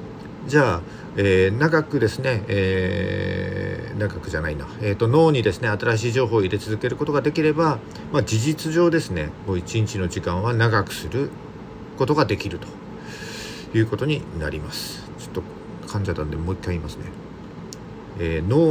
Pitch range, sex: 95-140 Hz, male